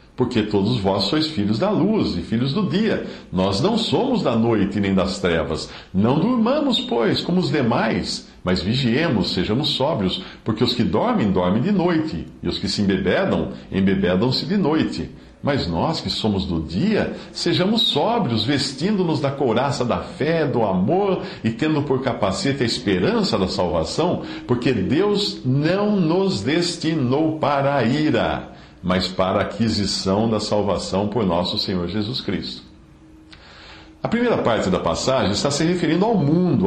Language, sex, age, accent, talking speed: English, male, 60-79, Brazilian, 160 wpm